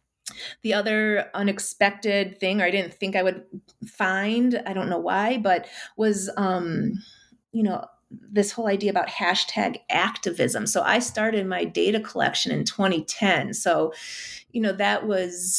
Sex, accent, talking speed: female, American, 150 wpm